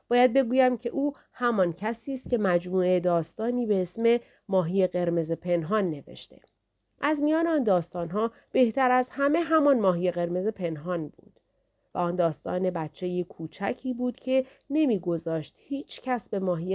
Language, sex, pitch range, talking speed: Persian, female, 170-255 Hz, 145 wpm